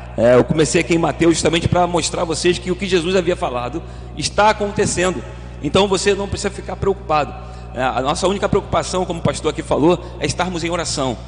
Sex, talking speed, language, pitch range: male, 205 wpm, Portuguese, 125-180 Hz